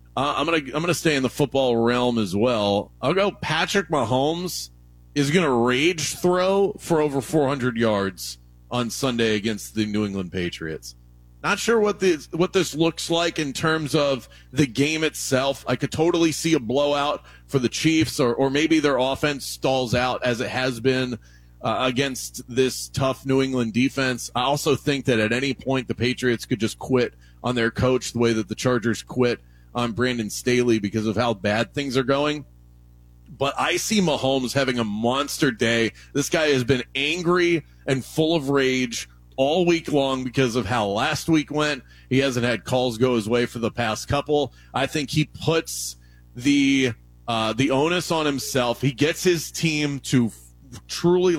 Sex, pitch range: male, 115-150 Hz